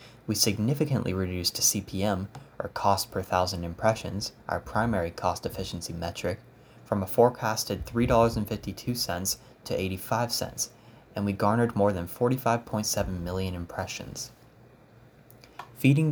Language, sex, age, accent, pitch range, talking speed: English, male, 10-29, American, 95-120 Hz, 110 wpm